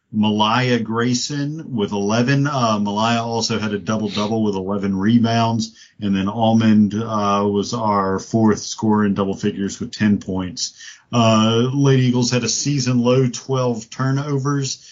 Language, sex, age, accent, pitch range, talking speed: English, male, 40-59, American, 100-120 Hz, 140 wpm